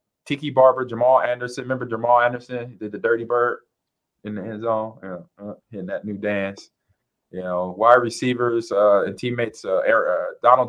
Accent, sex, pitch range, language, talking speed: American, male, 95-115 Hz, English, 175 wpm